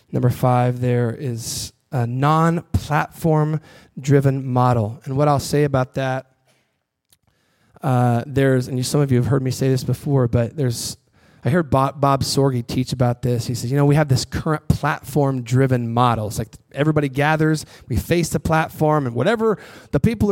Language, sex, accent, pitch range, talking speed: English, male, American, 135-190 Hz, 170 wpm